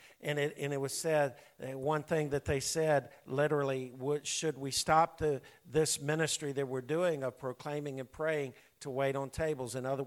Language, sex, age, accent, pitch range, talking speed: English, male, 50-69, American, 125-150 Hz, 175 wpm